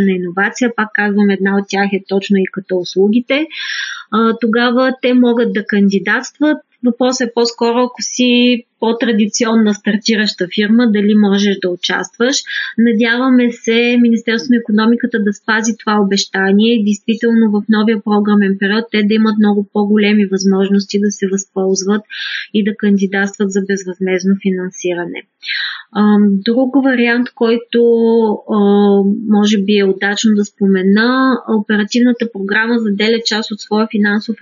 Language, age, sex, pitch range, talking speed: Bulgarian, 20-39, female, 205-235 Hz, 130 wpm